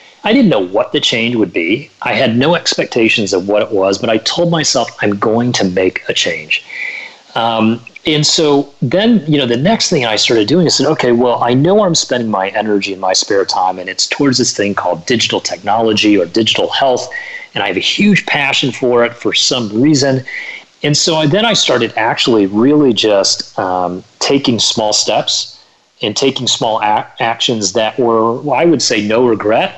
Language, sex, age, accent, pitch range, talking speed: English, male, 40-59, American, 105-145 Hz, 195 wpm